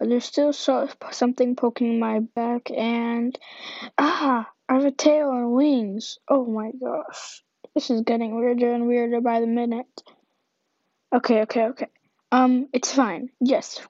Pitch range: 215-255 Hz